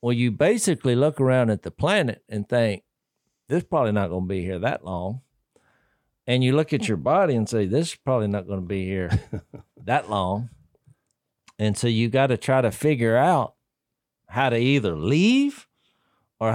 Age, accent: 50-69, American